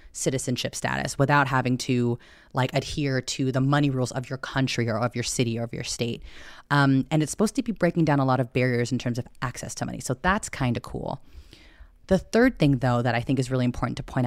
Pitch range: 125-160 Hz